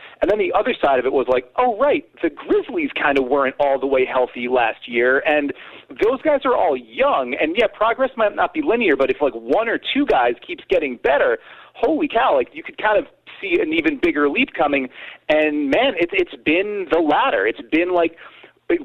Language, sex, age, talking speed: English, male, 30-49, 215 wpm